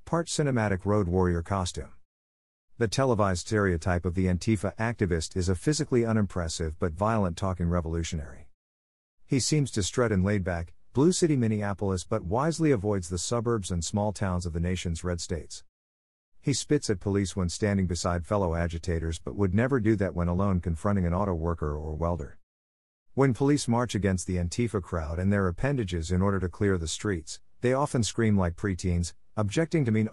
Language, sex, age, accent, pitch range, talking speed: English, male, 50-69, American, 85-110 Hz, 175 wpm